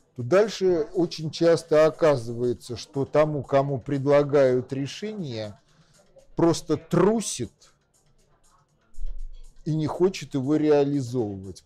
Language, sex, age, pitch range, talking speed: Russian, male, 50-69, 135-165 Hz, 80 wpm